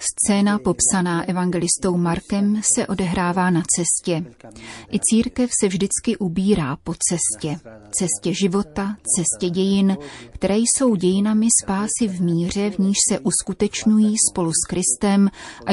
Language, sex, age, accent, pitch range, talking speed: Czech, female, 30-49, native, 175-205 Hz, 125 wpm